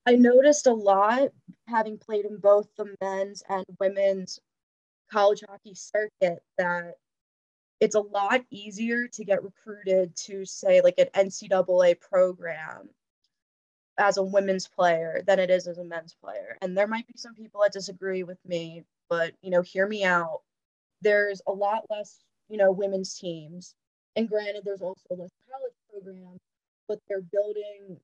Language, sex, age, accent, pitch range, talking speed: English, female, 20-39, American, 185-210 Hz, 160 wpm